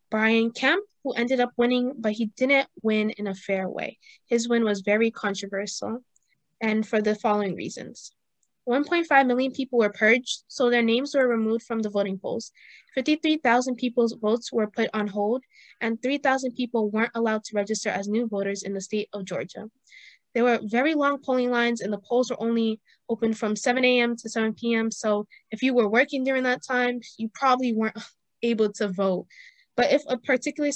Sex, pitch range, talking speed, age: female, 215-250 Hz, 185 wpm, 10-29